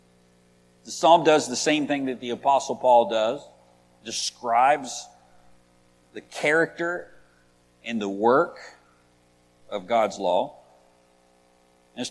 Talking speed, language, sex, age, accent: 105 wpm, English, male, 50-69, American